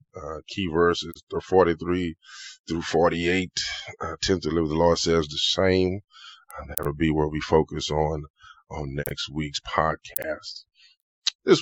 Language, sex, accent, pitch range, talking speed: English, male, American, 85-120 Hz, 145 wpm